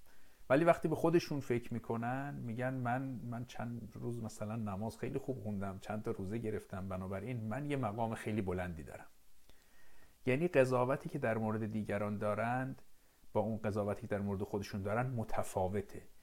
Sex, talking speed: male, 160 wpm